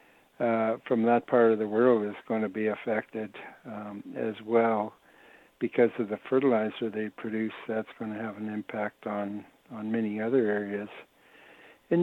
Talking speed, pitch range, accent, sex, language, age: 165 wpm, 105-120 Hz, American, male, English, 60-79